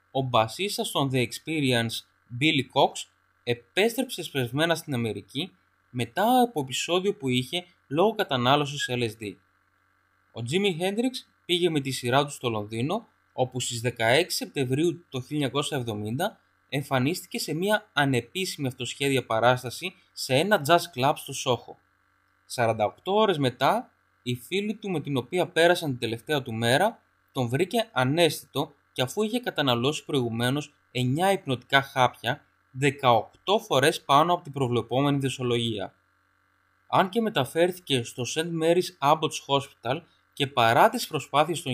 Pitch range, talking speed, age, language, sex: 120-155 Hz, 130 wpm, 20-39, Greek, male